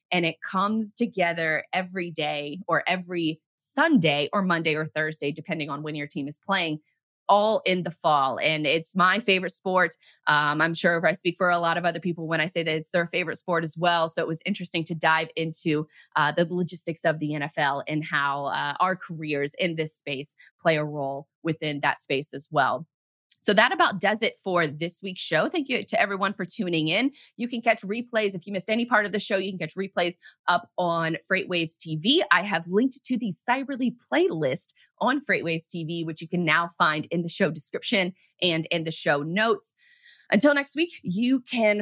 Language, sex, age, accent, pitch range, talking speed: English, female, 20-39, American, 160-200 Hz, 210 wpm